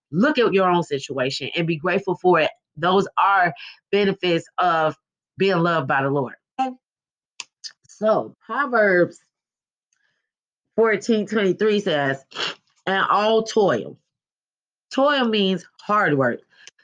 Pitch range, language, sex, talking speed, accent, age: 165-225 Hz, English, female, 110 wpm, American, 20-39